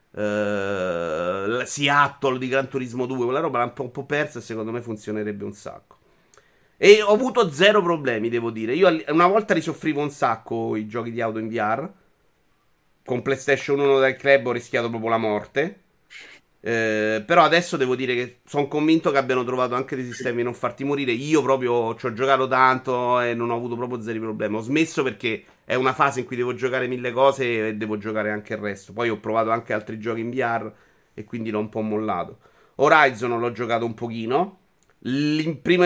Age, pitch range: 30-49, 115-155 Hz